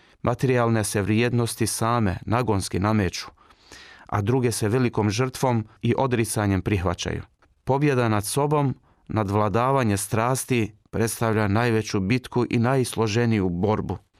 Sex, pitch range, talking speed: male, 100-125 Hz, 110 wpm